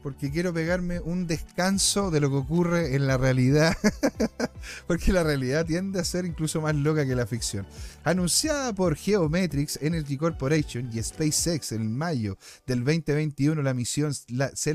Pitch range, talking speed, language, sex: 135-185 Hz, 155 wpm, Spanish, male